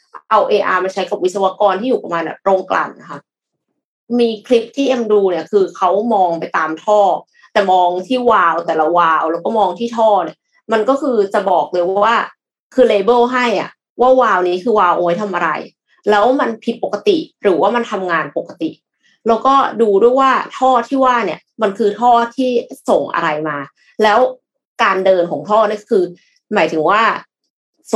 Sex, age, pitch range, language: female, 30-49, 180-240 Hz, Thai